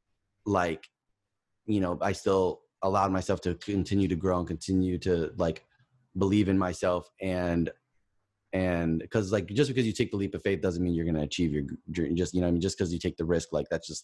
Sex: male